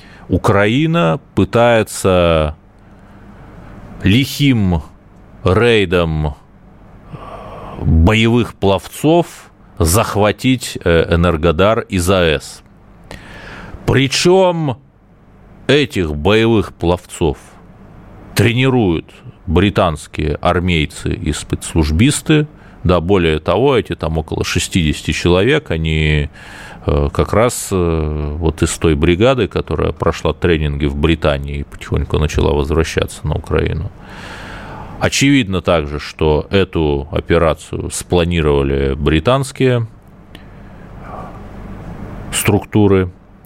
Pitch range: 80-105 Hz